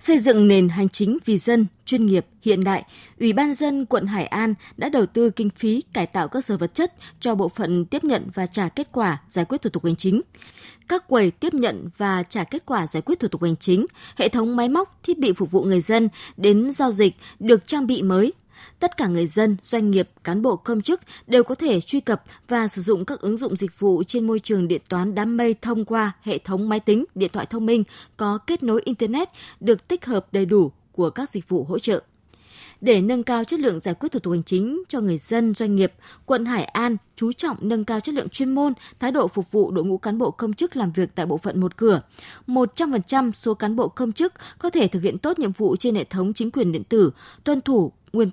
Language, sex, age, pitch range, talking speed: Vietnamese, female, 20-39, 195-255 Hz, 245 wpm